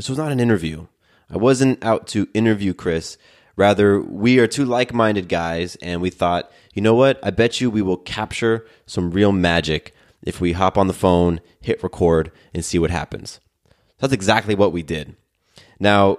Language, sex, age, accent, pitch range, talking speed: English, male, 20-39, American, 90-115 Hz, 185 wpm